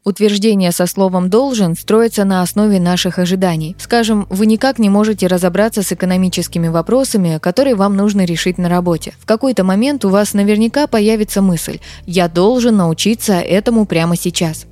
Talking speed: 155 wpm